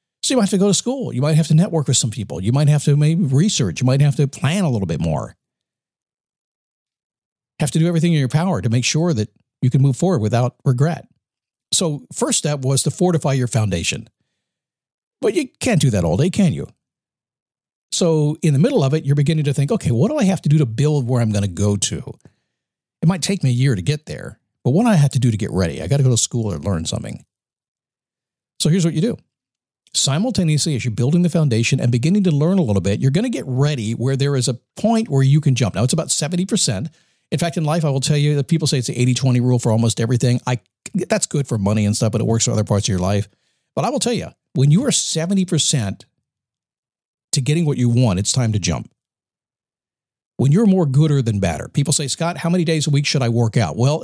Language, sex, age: English, male, 50-69